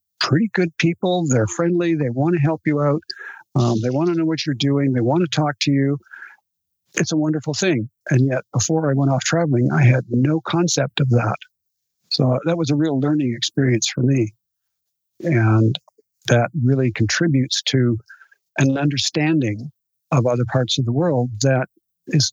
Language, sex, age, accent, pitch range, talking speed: English, male, 50-69, American, 125-160 Hz, 175 wpm